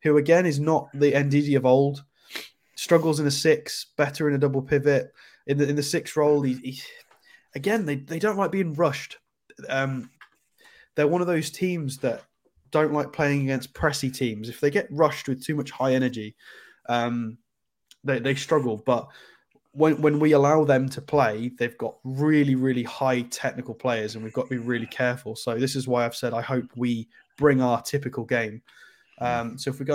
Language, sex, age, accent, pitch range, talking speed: English, male, 20-39, British, 120-150 Hz, 195 wpm